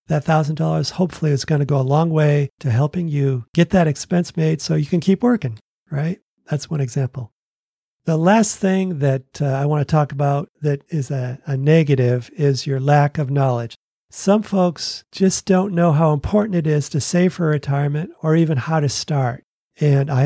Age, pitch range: 40-59, 140-170 Hz